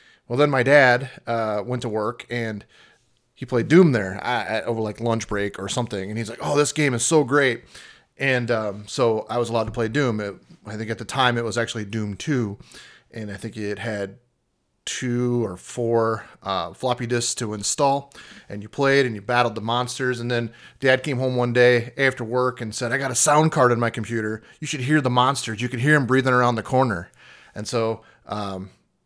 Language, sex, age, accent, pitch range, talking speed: English, male, 30-49, American, 105-125 Hz, 220 wpm